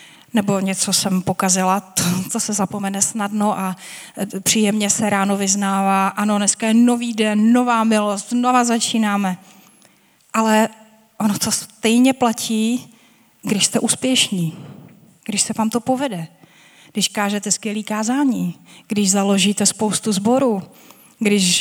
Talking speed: 125 wpm